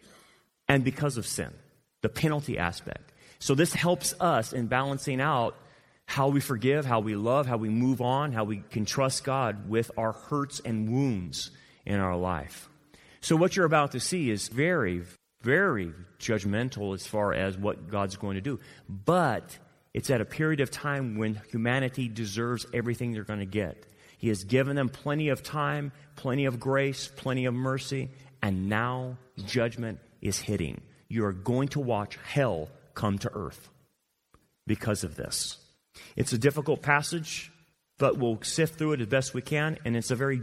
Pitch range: 110-140 Hz